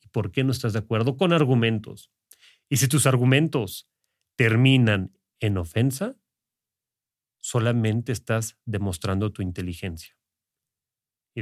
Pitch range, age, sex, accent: 105-155 Hz, 40-59, male, Mexican